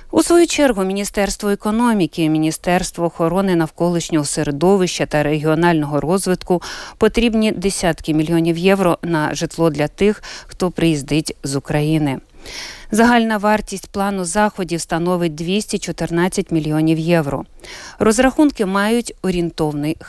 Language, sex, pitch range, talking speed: Ukrainian, female, 155-205 Hz, 105 wpm